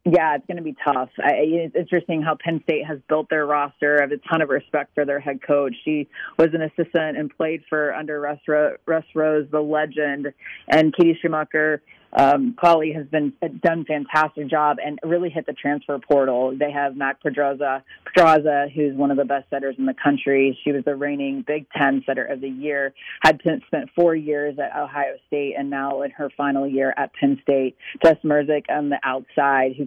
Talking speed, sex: 205 wpm, female